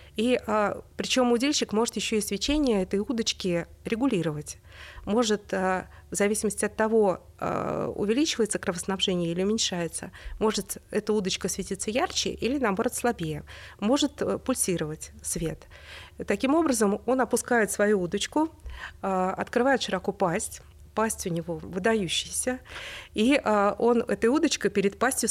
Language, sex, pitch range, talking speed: Russian, female, 185-235 Hz, 115 wpm